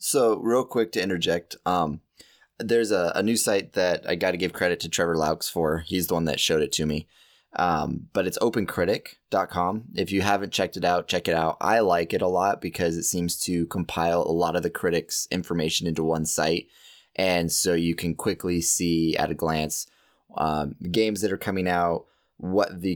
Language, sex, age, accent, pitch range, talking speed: English, male, 20-39, American, 85-105 Hz, 205 wpm